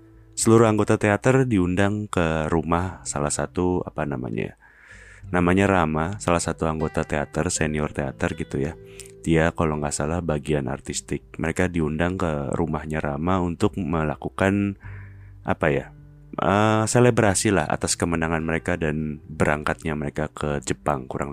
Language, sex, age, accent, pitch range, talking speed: Indonesian, male, 30-49, native, 75-100 Hz, 130 wpm